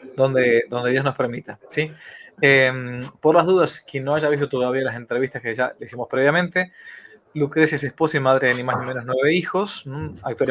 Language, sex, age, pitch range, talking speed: Spanish, male, 20-39, 125-155 Hz, 200 wpm